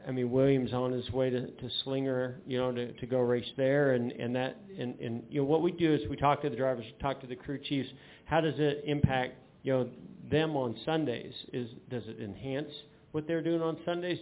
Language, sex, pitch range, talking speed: English, male, 125-145 Hz, 230 wpm